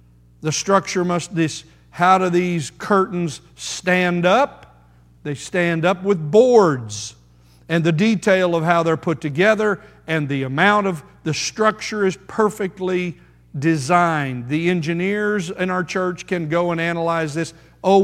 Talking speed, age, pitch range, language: 145 wpm, 50-69, 135-180 Hz, English